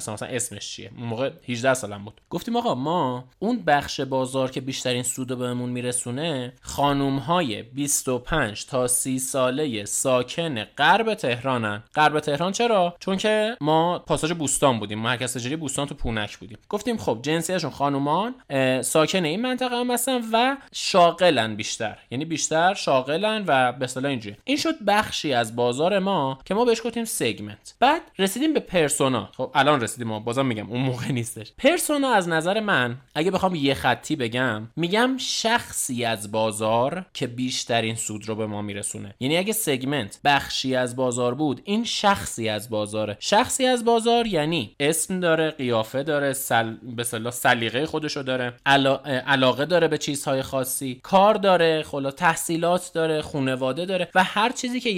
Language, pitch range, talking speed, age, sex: Persian, 125-175 Hz, 160 wpm, 20-39, male